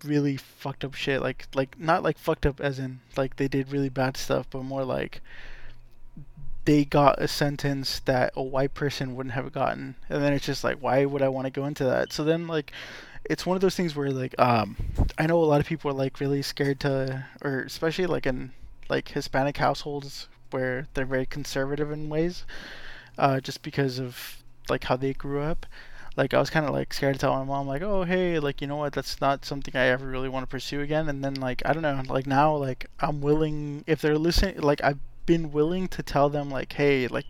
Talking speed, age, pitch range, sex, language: 225 wpm, 20-39, 130-150 Hz, male, English